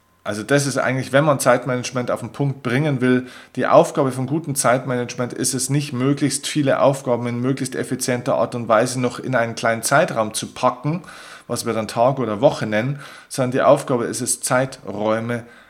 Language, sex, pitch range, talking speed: German, male, 115-135 Hz, 185 wpm